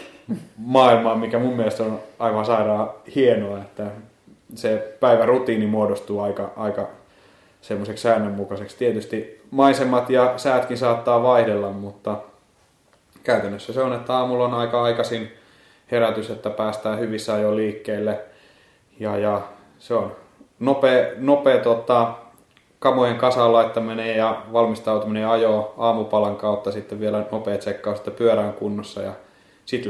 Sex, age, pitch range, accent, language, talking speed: male, 20-39, 105-115 Hz, native, Finnish, 120 wpm